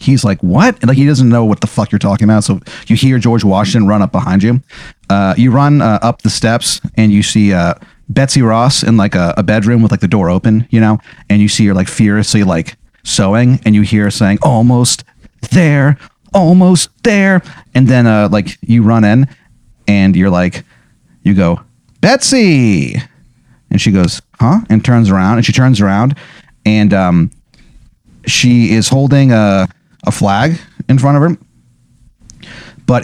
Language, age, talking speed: English, 30-49, 185 wpm